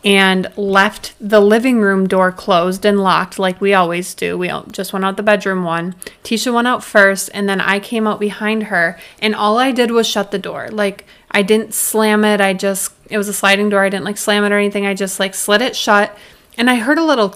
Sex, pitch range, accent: female, 190-210 Hz, American